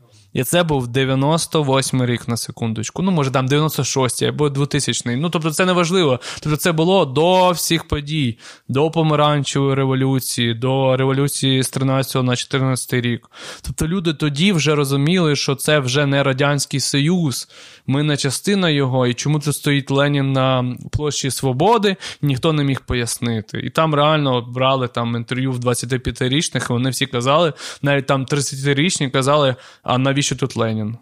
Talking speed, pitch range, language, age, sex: 160 wpm, 125-150 Hz, Ukrainian, 20-39, male